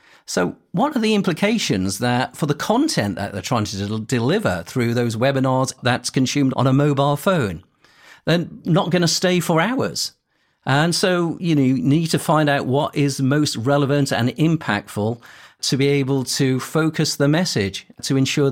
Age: 40-59